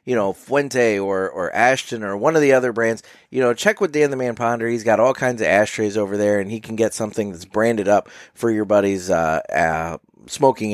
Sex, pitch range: male, 115-155 Hz